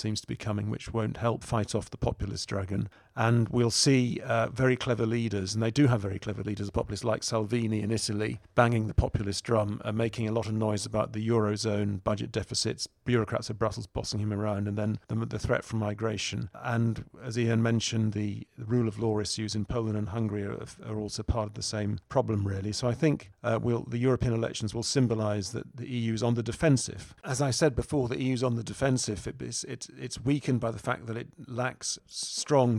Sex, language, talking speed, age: male, English, 210 wpm, 40-59